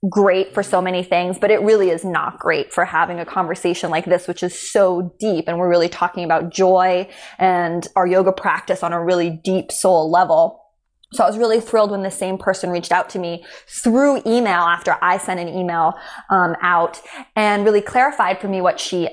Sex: female